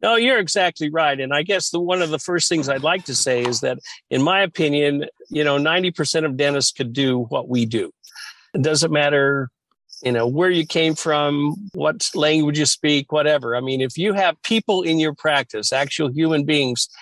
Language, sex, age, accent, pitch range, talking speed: English, male, 50-69, American, 140-175 Hz, 210 wpm